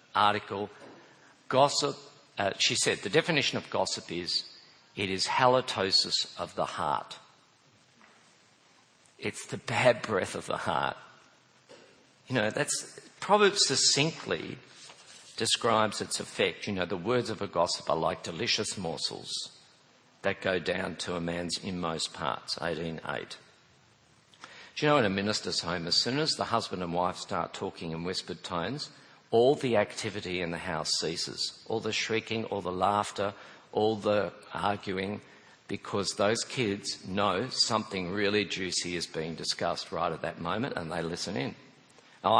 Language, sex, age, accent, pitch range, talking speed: English, male, 50-69, Australian, 90-125 Hz, 150 wpm